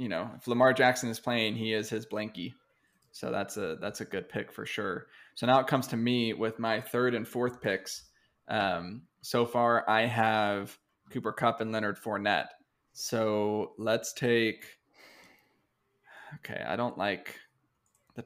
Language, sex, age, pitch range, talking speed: English, male, 20-39, 110-125 Hz, 165 wpm